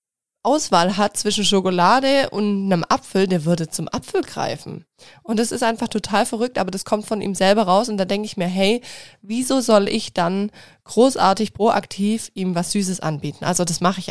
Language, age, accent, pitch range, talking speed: German, 20-39, German, 180-220 Hz, 190 wpm